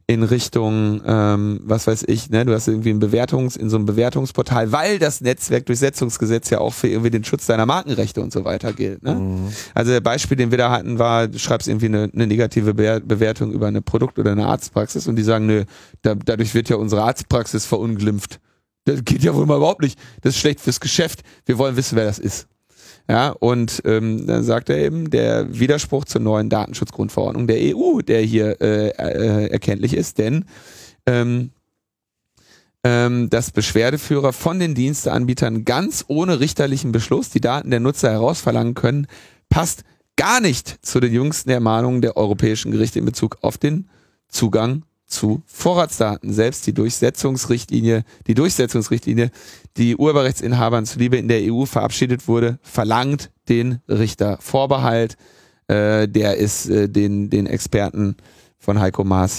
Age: 30-49